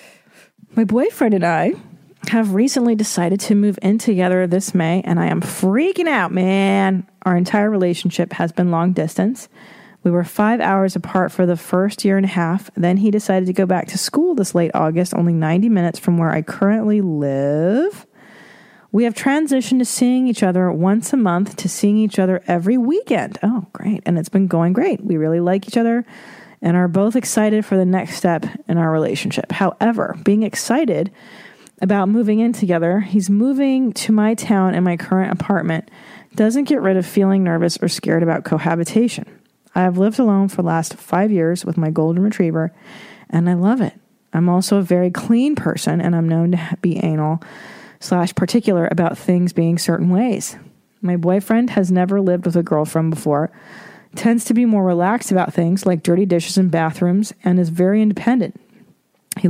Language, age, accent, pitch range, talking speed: English, 40-59, American, 175-215 Hz, 185 wpm